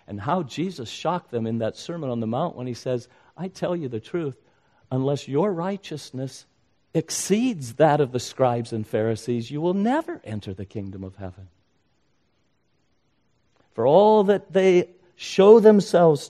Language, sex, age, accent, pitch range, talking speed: English, male, 50-69, American, 115-170 Hz, 160 wpm